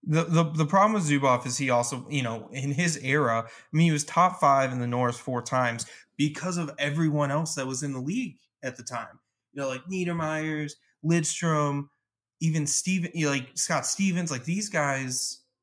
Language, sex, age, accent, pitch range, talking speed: English, male, 20-39, American, 125-155 Hz, 200 wpm